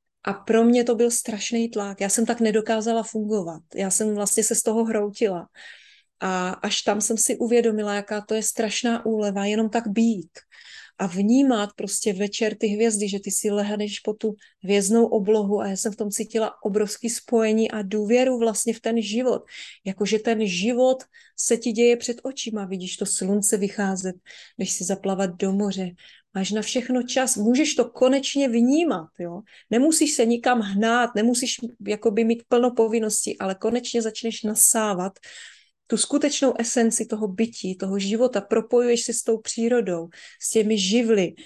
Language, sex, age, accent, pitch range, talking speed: Czech, female, 30-49, native, 205-235 Hz, 165 wpm